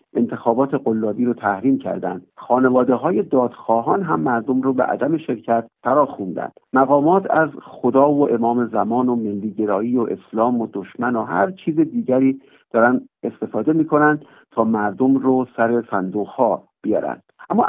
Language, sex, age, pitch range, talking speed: Persian, male, 50-69, 110-135 Hz, 140 wpm